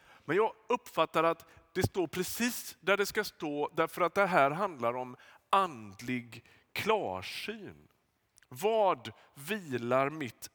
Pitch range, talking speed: 130-185 Hz, 125 wpm